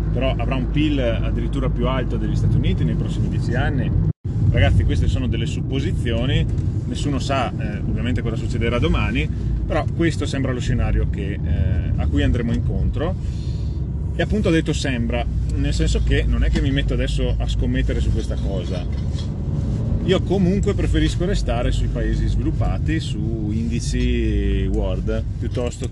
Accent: native